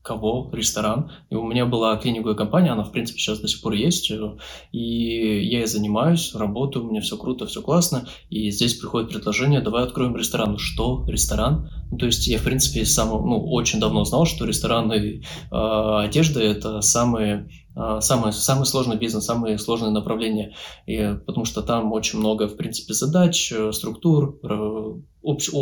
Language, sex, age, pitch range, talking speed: Russian, male, 20-39, 110-130 Hz, 170 wpm